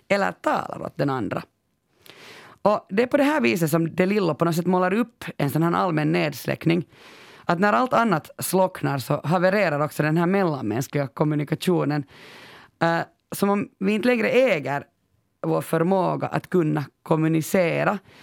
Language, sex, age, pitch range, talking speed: Swedish, female, 30-49, 145-195 Hz, 160 wpm